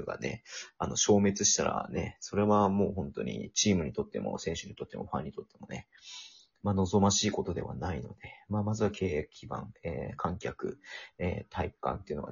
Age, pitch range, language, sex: 40-59, 95-110 Hz, Japanese, male